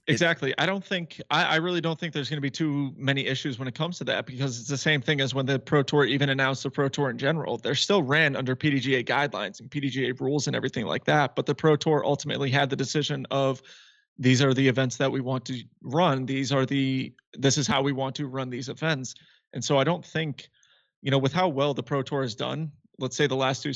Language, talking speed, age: English, 255 wpm, 30-49